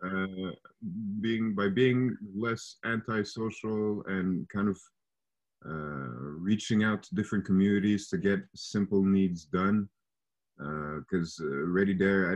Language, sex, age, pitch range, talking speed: English, male, 30-49, 90-110 Hz, 125 wpm